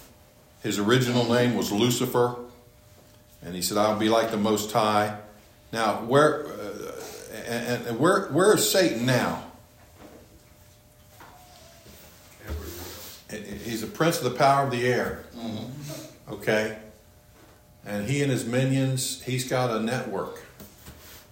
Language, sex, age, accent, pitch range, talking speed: English, male, 50-69, American, 110-130 Hz, 120 wpm